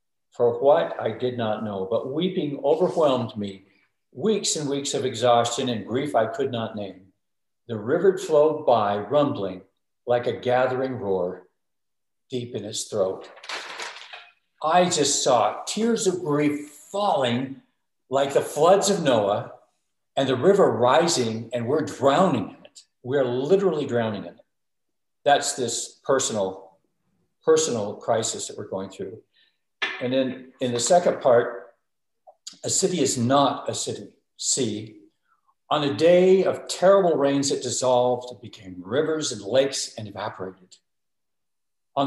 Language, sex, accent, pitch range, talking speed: English, male, American, 115-160 Hz, 140 wpm